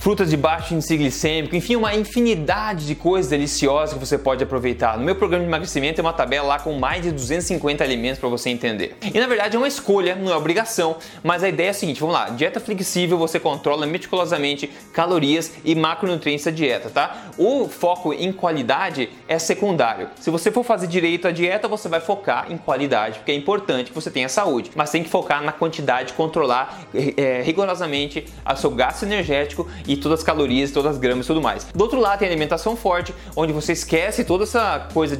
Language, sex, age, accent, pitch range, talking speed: Portuguese, male, 20-39, Brazilian, 145-200 Hz, 205 wpm